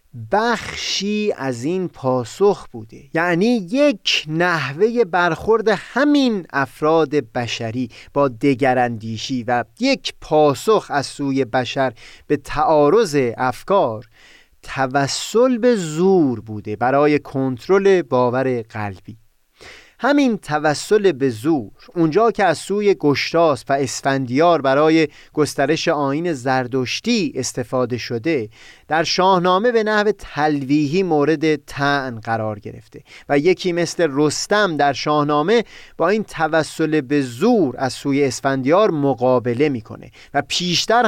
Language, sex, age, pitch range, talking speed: Persian, male, 30-49, 130-175 Hz, 110 wpm